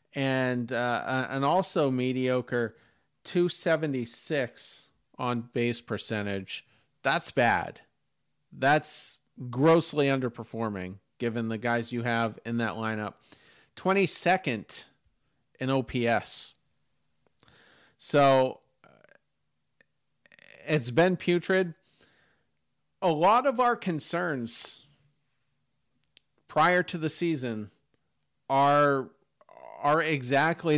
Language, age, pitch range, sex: English, 40-59, 120-160 Hz, male